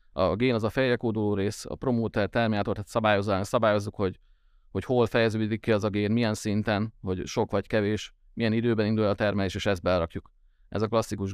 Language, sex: Hungarian, male